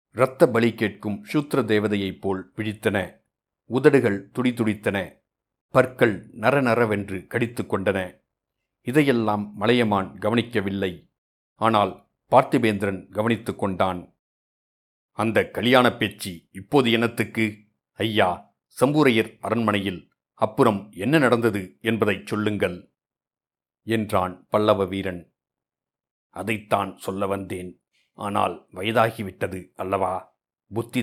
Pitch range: 95-115 Hz